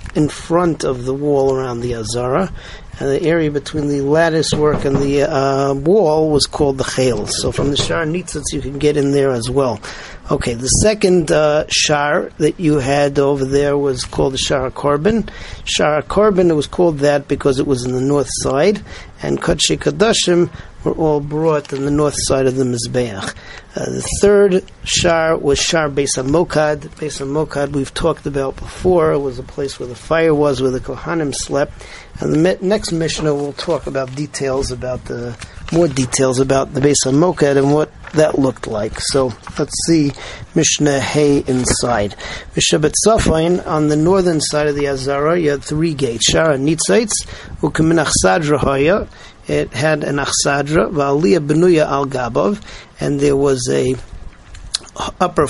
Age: 50-69